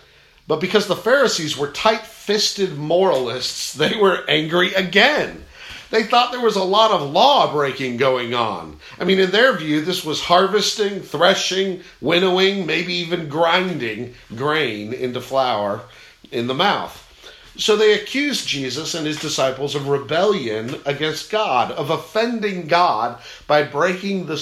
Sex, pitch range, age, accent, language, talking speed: male, 125-190 Hz, 50-69, American, English, 140 wpm